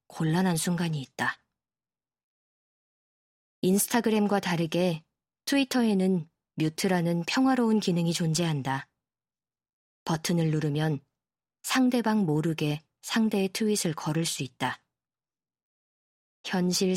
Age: 20-39